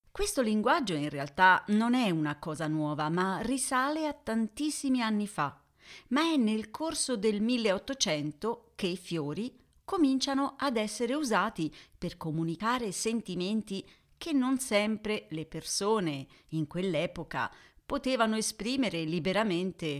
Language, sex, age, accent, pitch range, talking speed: Italian, female, 40-59, native, 165-250 Hz, 125 wpm